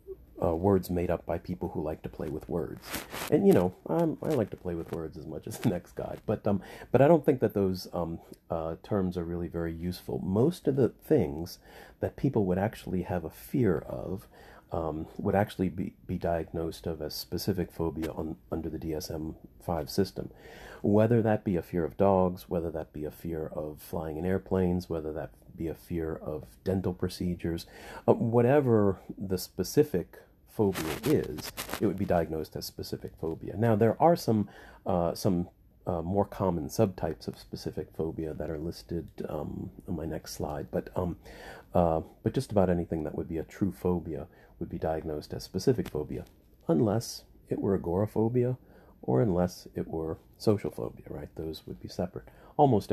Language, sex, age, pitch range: English, male, 40-59, 80-100 Hz